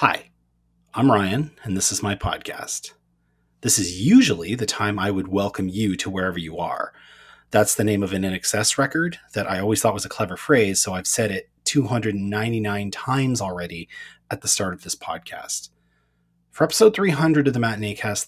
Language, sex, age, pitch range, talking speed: English, male, 30-49, 95-125 Hz, 185 wpm